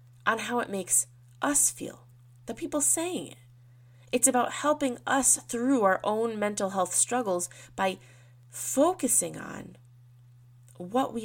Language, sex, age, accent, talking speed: English, female, 20-39, American, 135 wpm